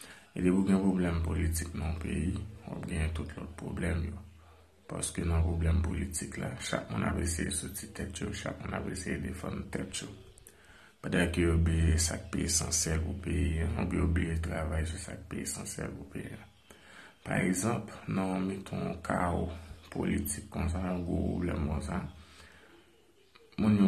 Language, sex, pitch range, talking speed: French, male, 80-95 Hz, 95 wpm